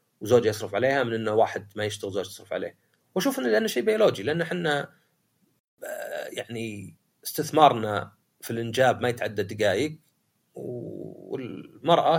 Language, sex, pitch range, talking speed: Arabic, male, 115-170 Hz, 130 wpm